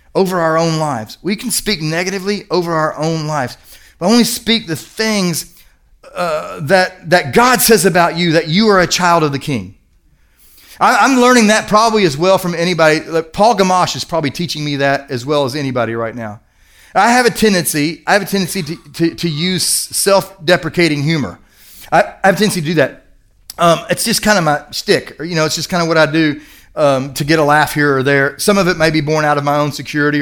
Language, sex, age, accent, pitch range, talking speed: English, male, 30-49, American, 125-170 Hz, 220 wpm